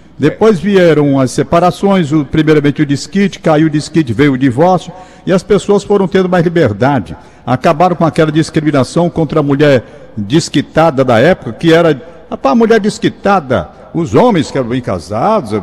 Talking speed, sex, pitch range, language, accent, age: 160 wpm, male, 135-195 Hz, Portuguese, Brazilian, 60-79